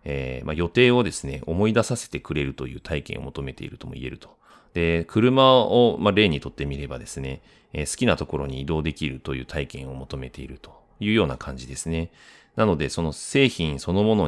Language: Japanese